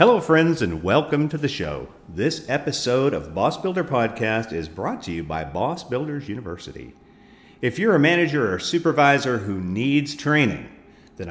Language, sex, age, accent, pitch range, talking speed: English, male, 50-69, American, 90-145 Hz, 165 wpm